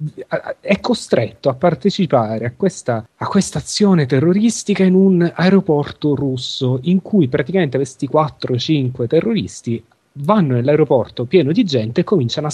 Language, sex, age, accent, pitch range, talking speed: Italian, male, 30-49, native, 120-160 Hz, 125 wpm